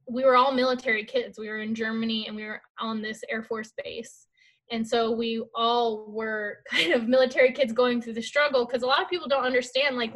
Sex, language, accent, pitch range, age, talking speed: female, English, American, 220-255 Hz, 10-29, 225 wpm